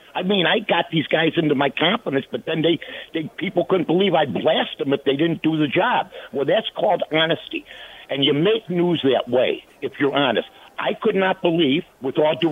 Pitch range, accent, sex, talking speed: 160-230 Hz, American, male, 215 wpm